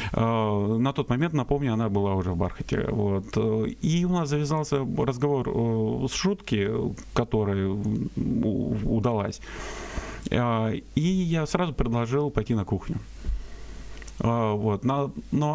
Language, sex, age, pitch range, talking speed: Russian, male, 30-49, 105-135 Hz, 100 wpm